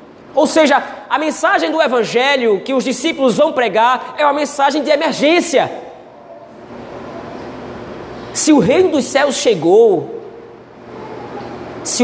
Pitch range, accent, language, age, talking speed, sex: 195-285 Hz, Brazilian, Portuguese, 20-39, 115 wpm, male